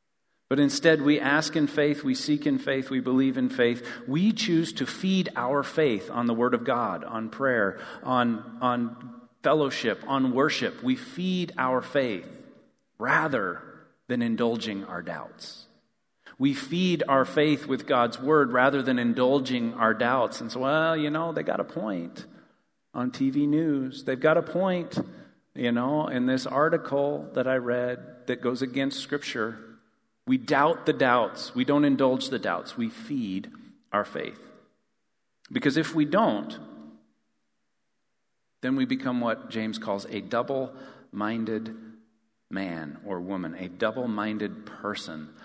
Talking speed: 150 wpm